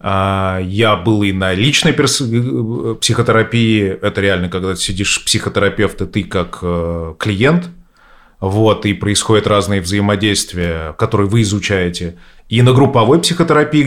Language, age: Russian, 30-49